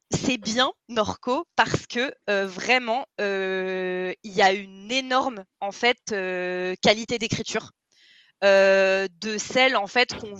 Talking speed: 140 wpm